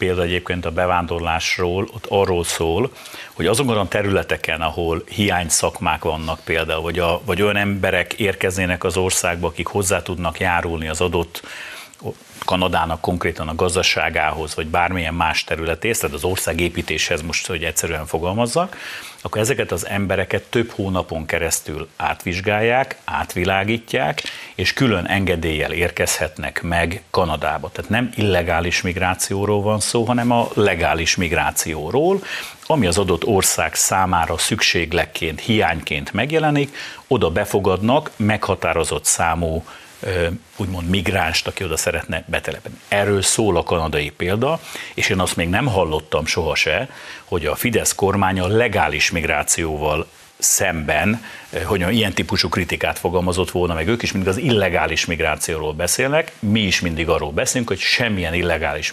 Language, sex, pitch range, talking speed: Hungarian, male, 85-100 Hz, 130 wpm